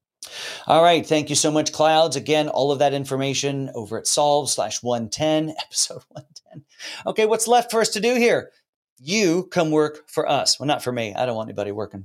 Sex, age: male, 40-59